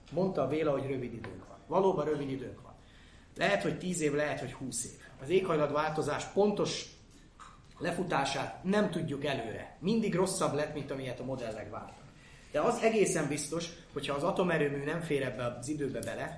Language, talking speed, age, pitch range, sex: Hungarian, 175 wpm, 30-49, 130-160 Hz, male